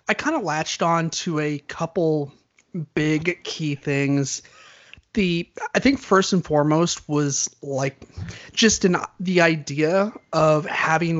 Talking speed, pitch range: 135 wpm, 140-170 Hz